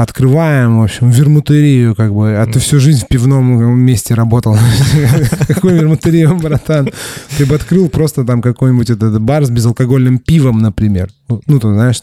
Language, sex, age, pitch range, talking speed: Russian, male, 20-39, 110-135 Hz, 160 wpm